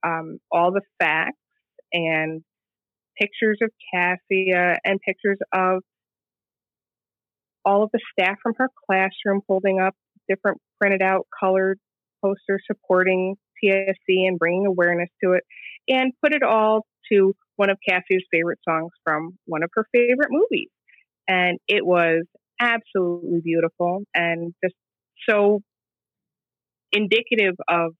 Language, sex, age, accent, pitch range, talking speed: English, female, 30-49, American, 160-195 Hz, 120 wpm